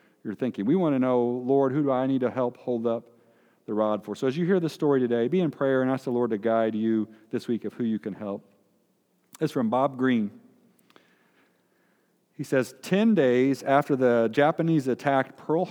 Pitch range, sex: 125-170 Hz, male